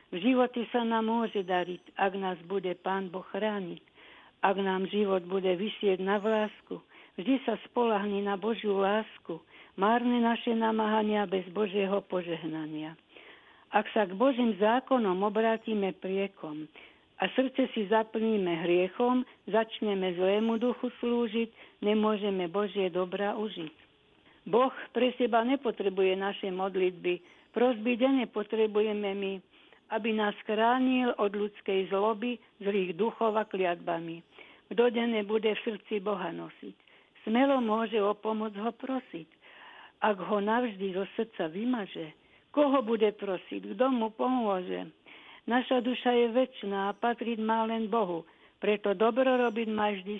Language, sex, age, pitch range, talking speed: Slovak, female, 60-79, 195-230 Hz, 130 wpm